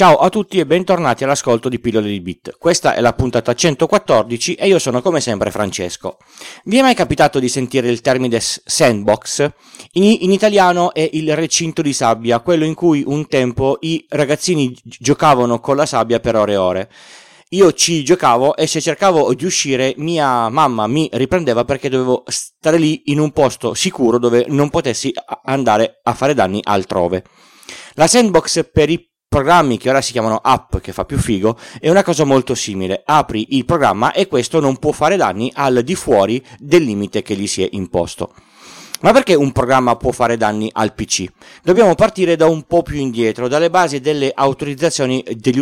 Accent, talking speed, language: native, 185 wpm, Italian